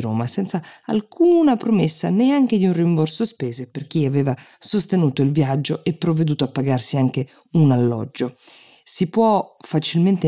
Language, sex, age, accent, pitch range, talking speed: Italian, female, 20-39, native, 130-190 Hz, 145 wpm